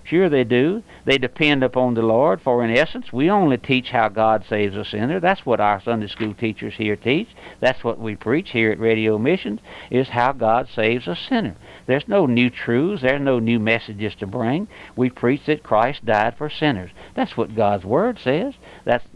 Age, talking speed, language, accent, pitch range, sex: 60-79, 200 wpm, English, American, 110-135 Hz, male